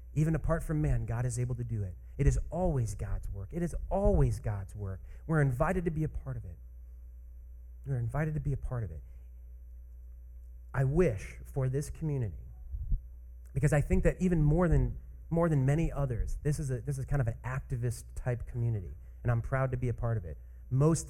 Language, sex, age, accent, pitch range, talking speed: English, male, 30-49, American, 80-135 Hz, 195 wpm